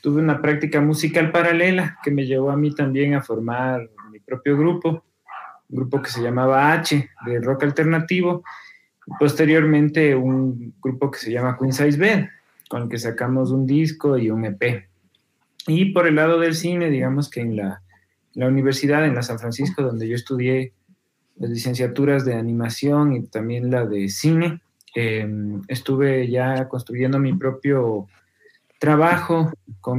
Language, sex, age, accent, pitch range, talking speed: Spanish, male, 30-49, Mexican, 125-155 Hz, 160 wpm